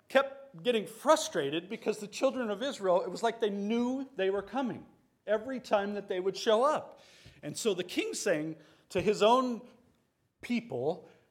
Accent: American